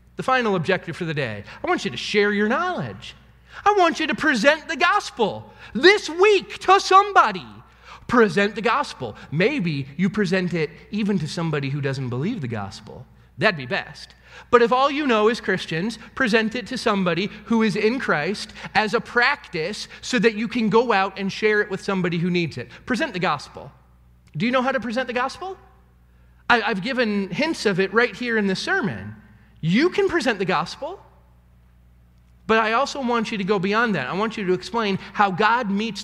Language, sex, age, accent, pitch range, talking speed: English, male, 30-49, American, 160-235 Hz, 195 wpm